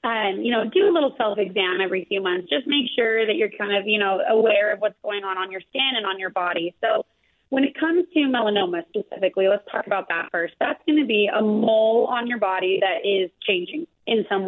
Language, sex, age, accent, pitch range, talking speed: English, female, 30-49, American, 195-245 Hz, 235 wpm